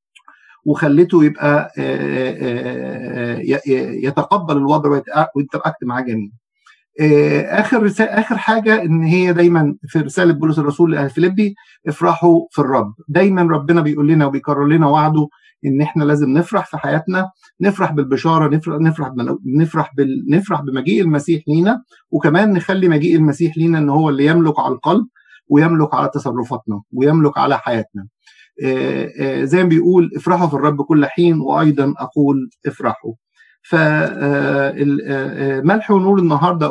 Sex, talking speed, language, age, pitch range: male, 125 wpm, Arabic, 50-69, 140-180 Hz